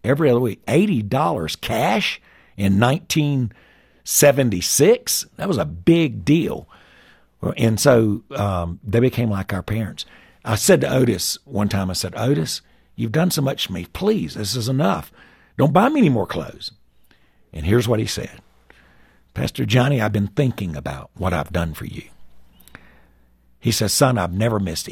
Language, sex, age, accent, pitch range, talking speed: English, male, 60-79, American, 80-120 Hz, 160 wpm